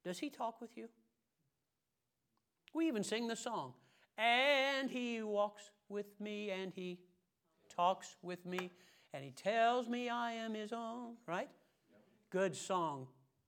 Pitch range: 170-230 Hz